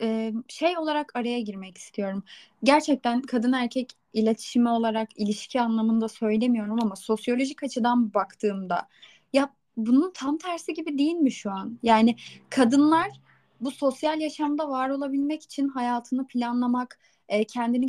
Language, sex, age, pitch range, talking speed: Turkish, female, 10-29, 220-275 Hz, 125 wpm